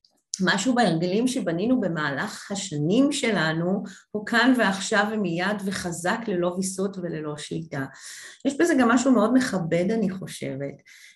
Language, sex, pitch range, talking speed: Hebrew, female, 175-230 Hz, 125 wpm